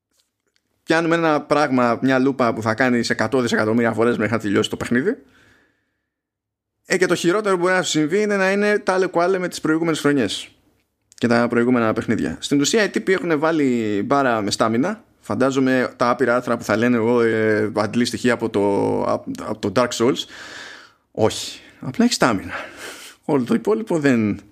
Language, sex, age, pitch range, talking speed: Greek, male, 20-39, 115-160 Hz, 170 wpm